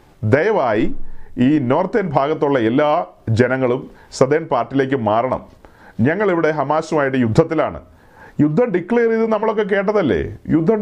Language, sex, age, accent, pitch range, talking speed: Malayalam, male, 40-59, native, 155-210 Hz, 100 wpm